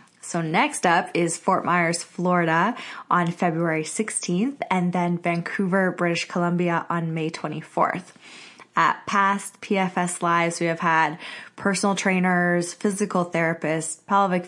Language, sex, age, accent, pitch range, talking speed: English, female, 20-39, American, 170-195 Hz, 125 wpm